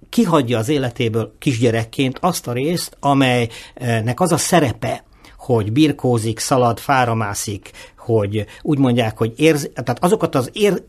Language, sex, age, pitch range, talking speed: Hungarian, male, 50-69, 115-155 Hz, 130 wpm